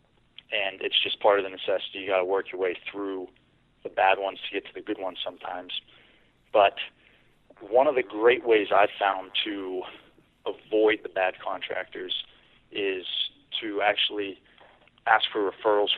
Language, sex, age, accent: English, male, 30-49, American